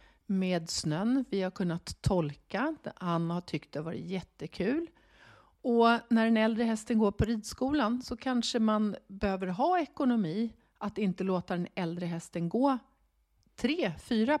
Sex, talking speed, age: female, 150 wpm, 40-59